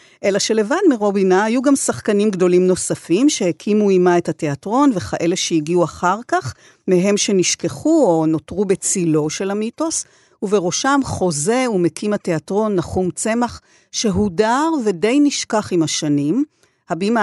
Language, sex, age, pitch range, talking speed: Hebrew, female, 50-69, 170-225 Hz, 120 wpm